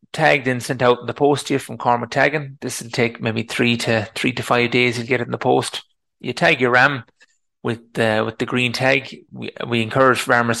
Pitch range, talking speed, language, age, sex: 115-130 Hz, 240 wpm, English, 30-49, male